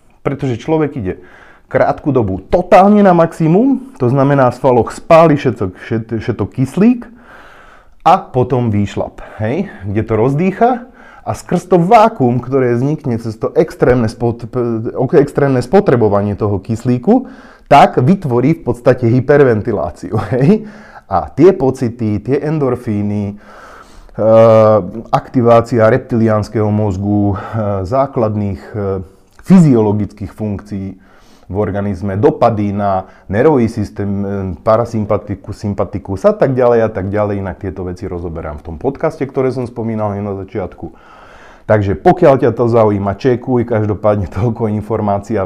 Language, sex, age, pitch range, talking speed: Slovak, male, 30-49, 105-130 Hz, 120 wpm